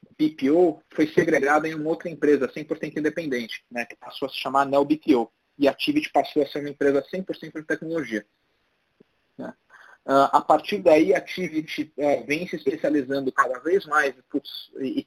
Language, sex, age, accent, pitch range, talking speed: Portuguese, male, 30-49, Brazilian, 130-160 Hz, 180 wpm